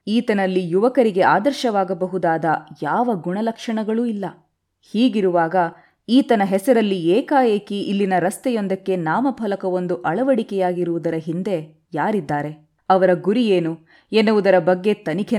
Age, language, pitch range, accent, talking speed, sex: 20-39, Kannada, 165-200 Hz, native, 85 wpm, female